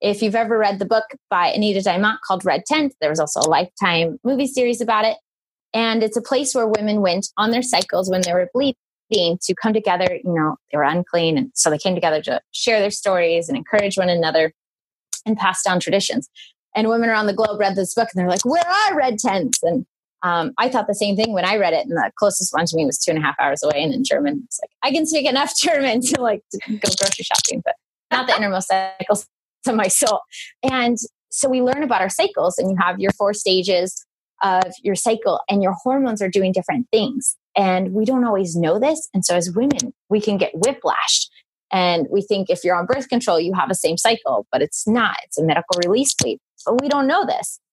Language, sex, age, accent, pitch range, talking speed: English, female, 20-39, American, 180-240 Hz, 235 wpm